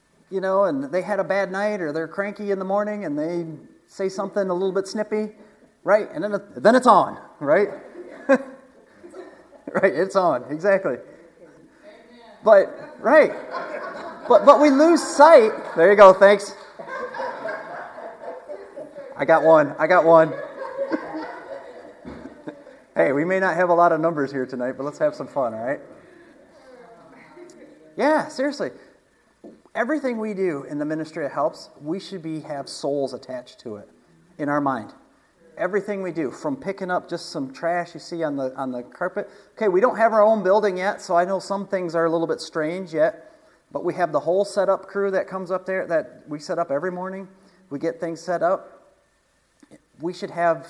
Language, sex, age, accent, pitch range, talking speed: English, male, 30-49, American, 165-215 Hz, 175 wpm